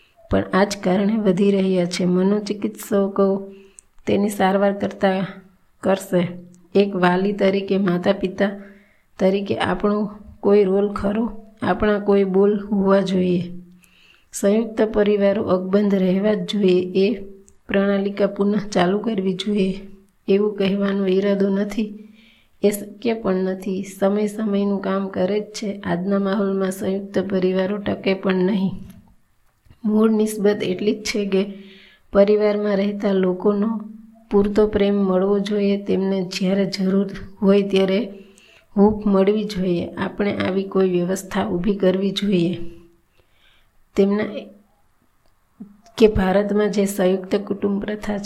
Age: 20-39